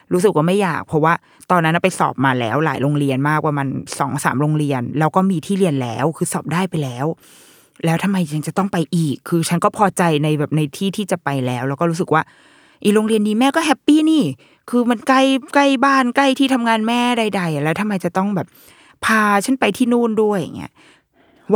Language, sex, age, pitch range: Thai, female, 20-39, 155-210 Hz